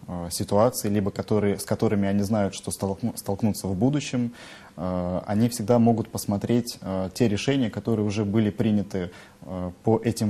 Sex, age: male, 20-39